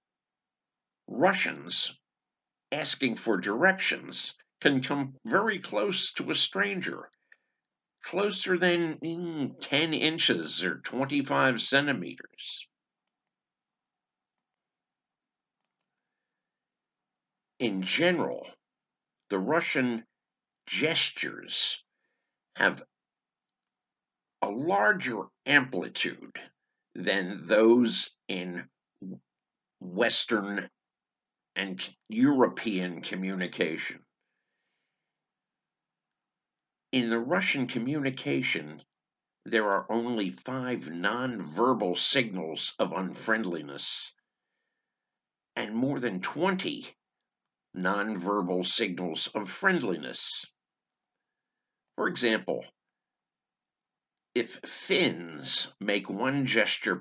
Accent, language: American, English